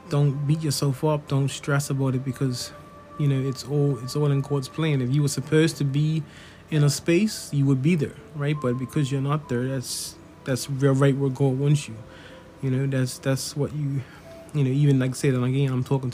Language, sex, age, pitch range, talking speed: English, male, 20-39, 130-145 Hz, 225 wpm